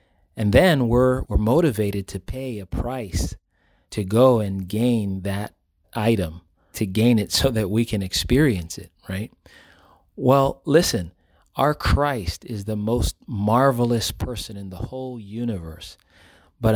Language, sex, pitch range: English, male, 95-120 Hz